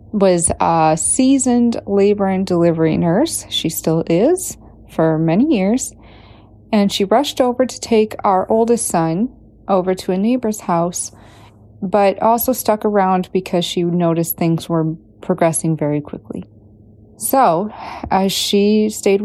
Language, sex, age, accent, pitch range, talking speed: English, female, 30-49, American, 165-235 Hz, 135 wpm